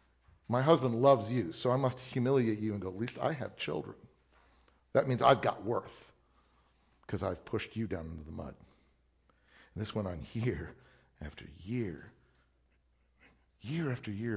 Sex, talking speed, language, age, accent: male, 165 wpm, English, 50-69, American